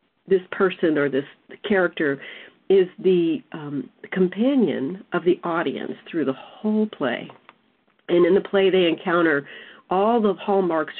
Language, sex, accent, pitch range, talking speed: English, female, American, 150-210 Hz, 135 wpm